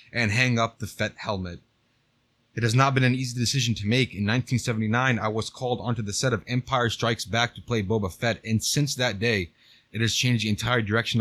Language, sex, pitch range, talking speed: English, male, 105-125 Hz, 220 wpm